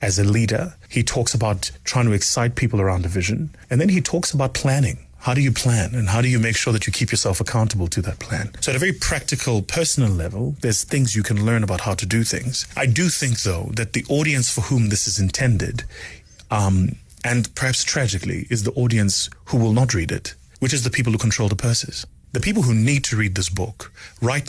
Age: 30-49